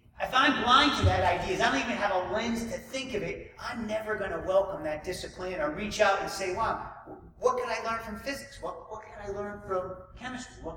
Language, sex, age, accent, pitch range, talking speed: English, male, 40-59, American, 185-225 Hz, 240 wpm